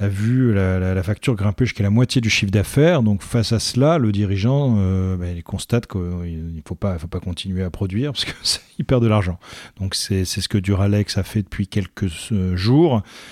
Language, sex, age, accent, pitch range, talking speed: French, male, 40-59, French, 95-115 Hz, 220 wpm